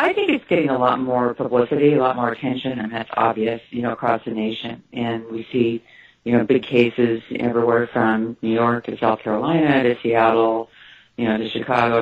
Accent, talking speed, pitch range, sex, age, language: American, 200 wpm, 120-145 Hz, female, 40-59, English